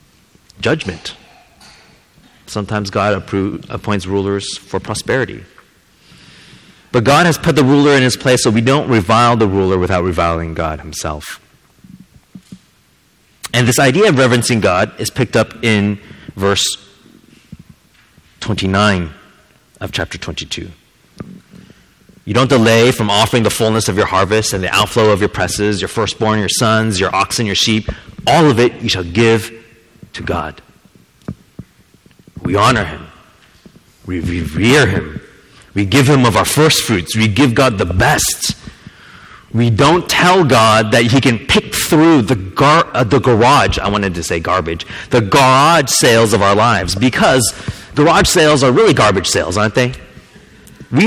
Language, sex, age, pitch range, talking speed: English, male, 30-49, 100-130 Hz, 150 wpm